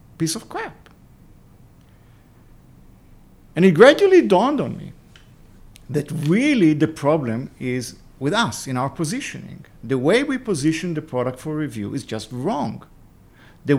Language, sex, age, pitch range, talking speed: English, male, 50-69, 120-190 Hz, 135 wpm